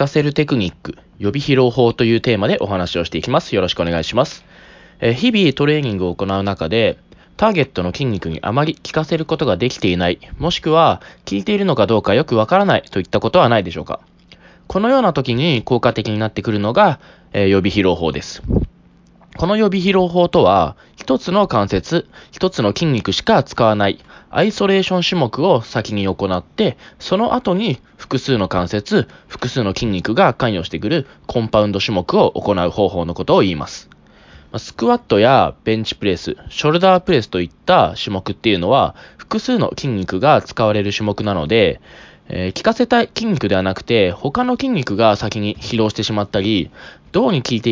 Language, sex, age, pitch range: Japanese, male, 20-39, 95-160 Hz